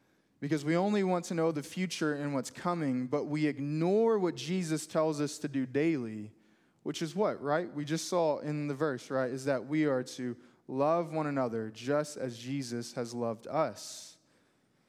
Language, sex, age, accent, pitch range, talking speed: English, male, 20-39, American, 140-175 Hz, 185 wpm